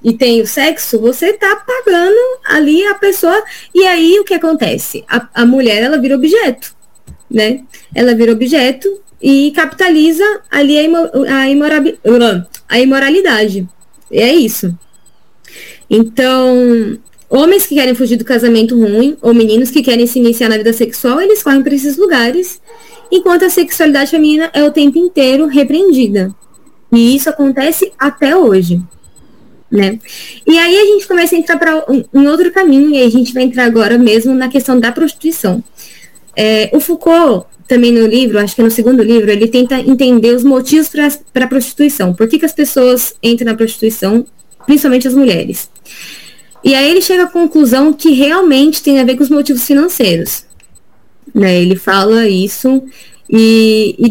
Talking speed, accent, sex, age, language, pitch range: 165 wpm, Brazilian, female, 10-29, Portuguese, 235-320 Hz